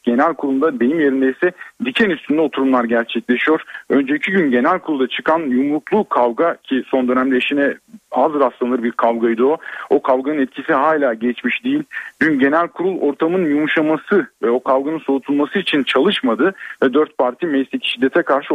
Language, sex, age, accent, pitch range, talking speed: Turkish, male, 40-59, native, 125-165 Hz, 155 wpm